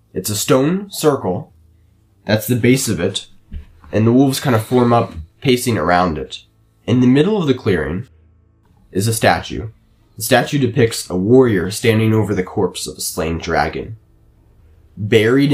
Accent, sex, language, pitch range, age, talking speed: American, male, English, 90-115 Hz, 20-39, 160 wpm